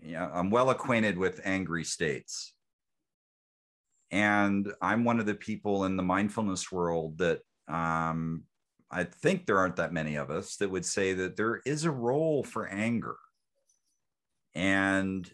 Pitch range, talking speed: 80-105 Hz, 145 wpm